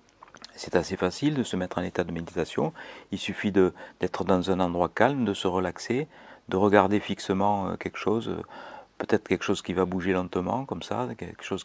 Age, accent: 40-59, French